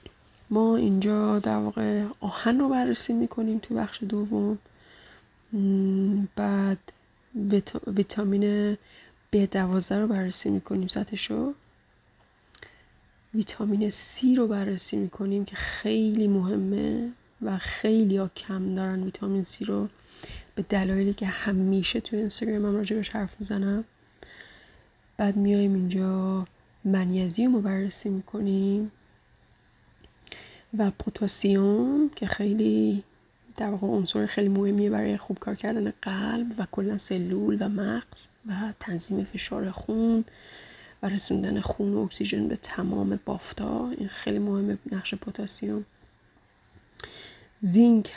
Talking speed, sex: 110 wpm, female